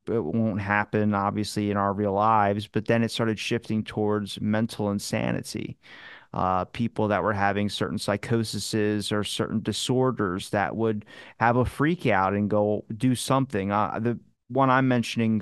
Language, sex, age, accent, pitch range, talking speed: English, male, 30-49, American, 105-125 Hz, 160 wpm